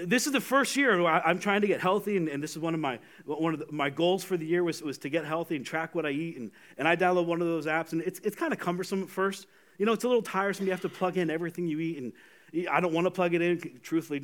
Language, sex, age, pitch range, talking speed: English, male, 30-49, 155-210 Hz, 310 wpm